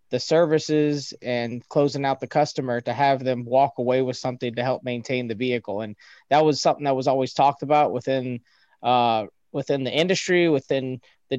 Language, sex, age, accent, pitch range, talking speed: English, male, 20-39, American, 125-145 Hz, 185 wpm